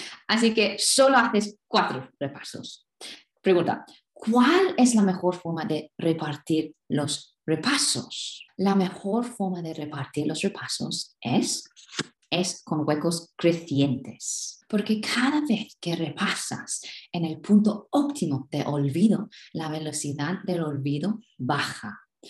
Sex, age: female, 20-39